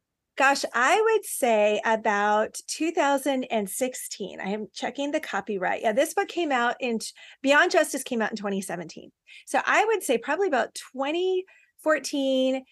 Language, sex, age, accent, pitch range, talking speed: English, female, 40-59, American, 215-300 Hz, 140 wpm